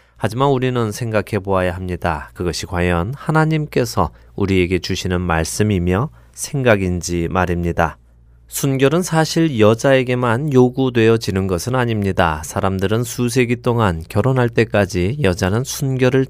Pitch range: 90-120 Hz